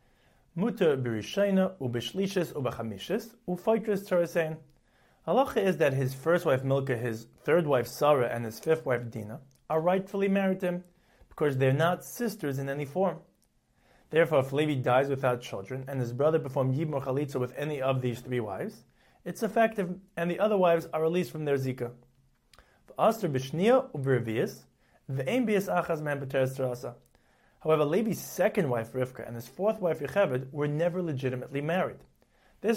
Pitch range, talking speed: 130-180 Hz, 155 wpm